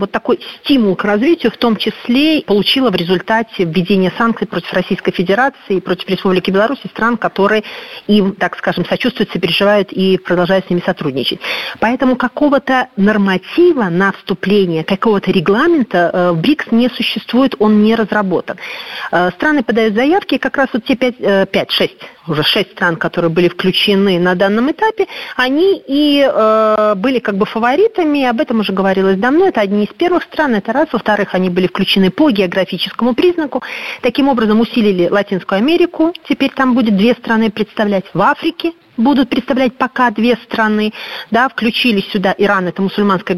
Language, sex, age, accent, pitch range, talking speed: Russian, female, 40-59, native, 190-255 Hz, 155 wpm